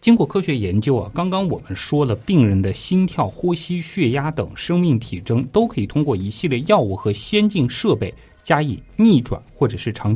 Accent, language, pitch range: native, Chinese, 100-155 Hz